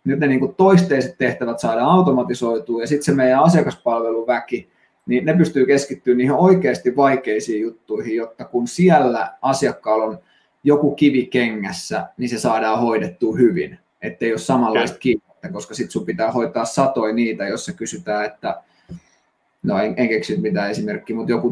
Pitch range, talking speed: 110-140 Hz, 150 wpm